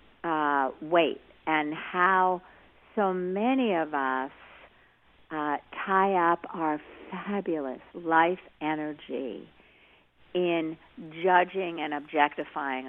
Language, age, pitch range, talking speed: English, 50-69, 145-175 Hz, 90 wpm